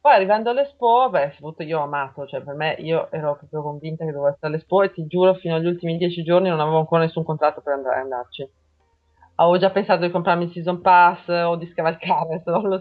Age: 20-39